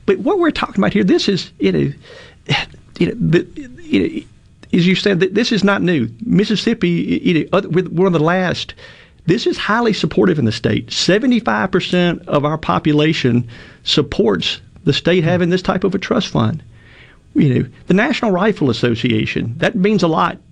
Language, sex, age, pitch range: English, male, 50-69, 130-185 Hz